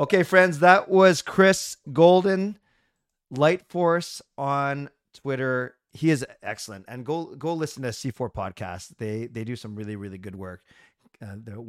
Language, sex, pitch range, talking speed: English, male, 110-145 Hz, 150 wpm